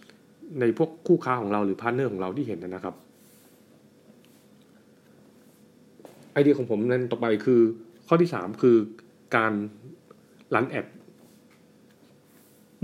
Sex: male